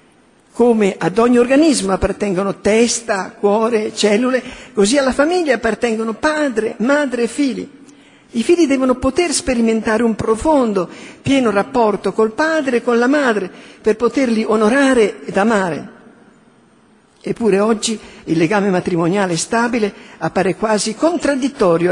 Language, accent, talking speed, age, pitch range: Italian, native, 125 wpm, 60-79, 195-265 Hz